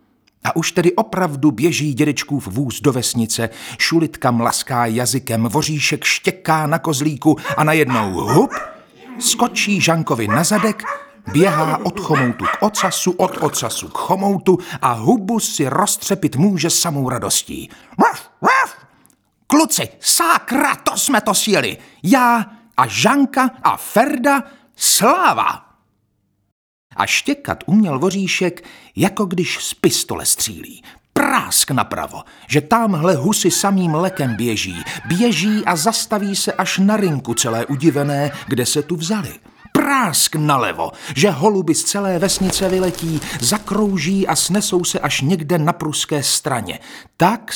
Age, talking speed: 50-69, 125 wpm